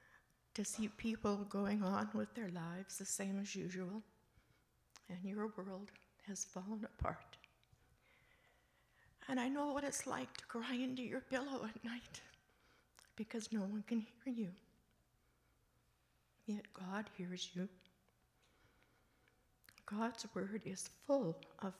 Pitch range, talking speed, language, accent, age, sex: 185-230 Hz, 125 wpm, English, American, 60-79, female